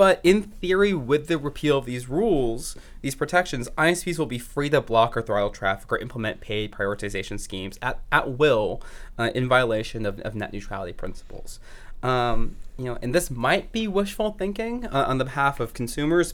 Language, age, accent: English, 20-39, American